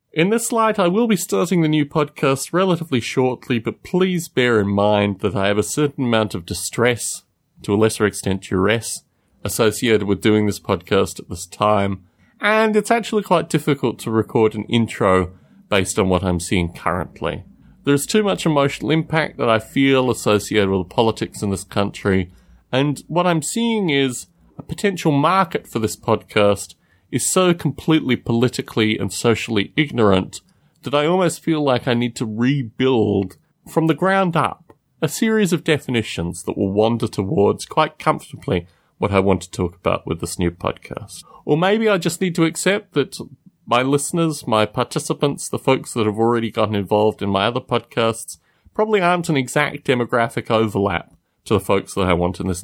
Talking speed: 175 wpm